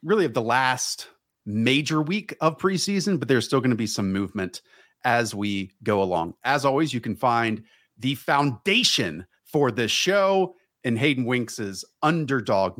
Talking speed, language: 160 wpm, English